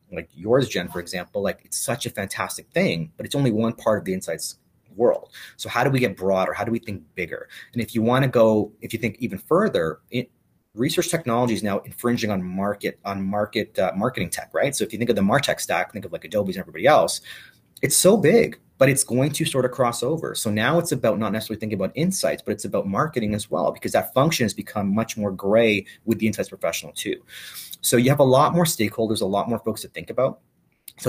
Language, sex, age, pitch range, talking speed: English, male, 30-49, 100-125 Hz, 245 wpm